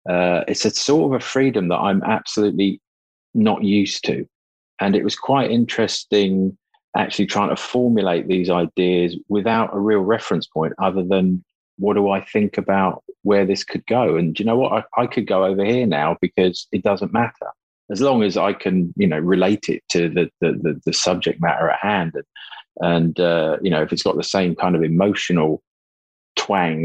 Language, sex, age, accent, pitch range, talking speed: English, male, 40-59, British, 85-100 Hz, 200 wpm